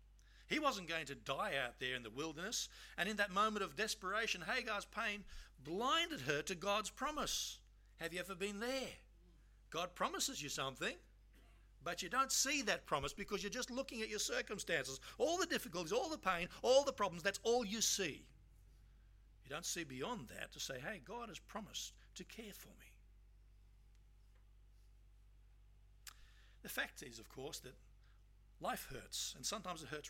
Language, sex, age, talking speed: English, male, 60-79, 170 wpm